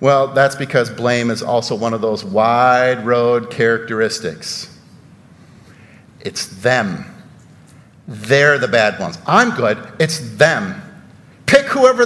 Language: English